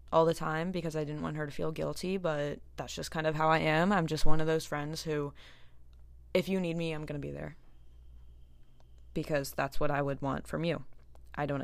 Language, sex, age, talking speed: English, female, 20-39, 230 wpm